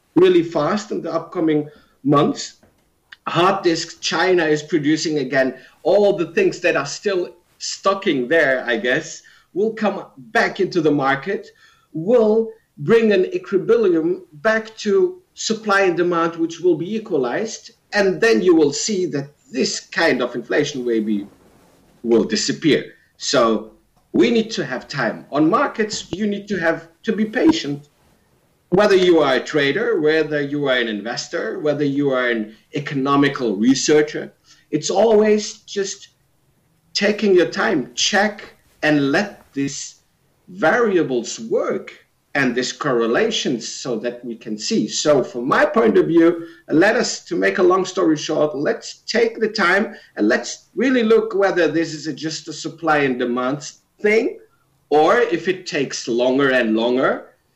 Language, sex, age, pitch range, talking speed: German, male, 50-69, 140-215 Hz, 150 wpm